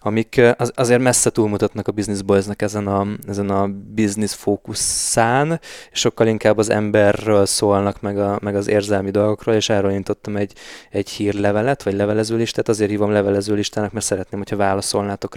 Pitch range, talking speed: 100-110 Hz, 160 wpm